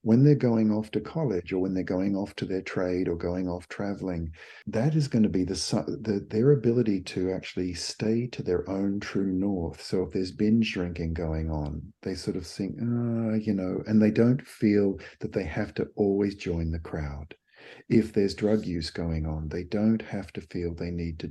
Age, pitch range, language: 50-69, 85-110 Hz, English